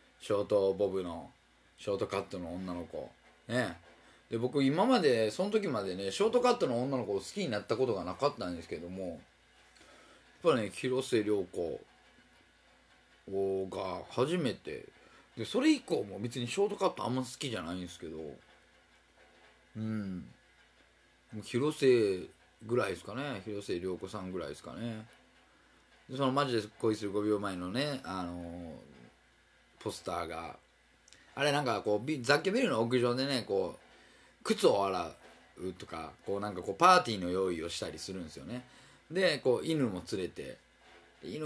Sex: male